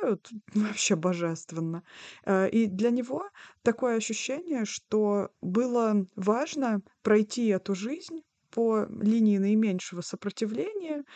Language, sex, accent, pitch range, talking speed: Russian, female, native, 195-240 Hz, 90 wpm